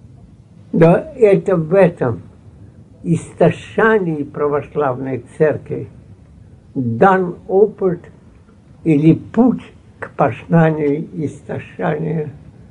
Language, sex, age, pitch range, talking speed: Russian, male, 60-79, 120-175 Hz, 65 wpm